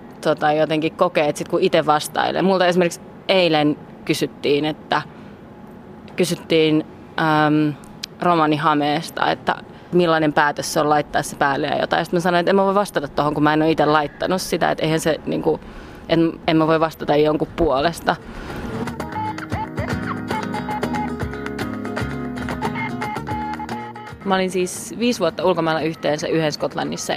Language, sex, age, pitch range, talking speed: Finnish, female, 20-39, 155-185 Hz, 130 wpm